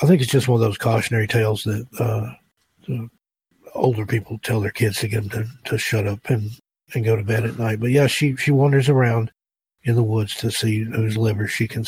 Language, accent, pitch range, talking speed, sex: English, American, 110-120 Hz, 225 wpm, male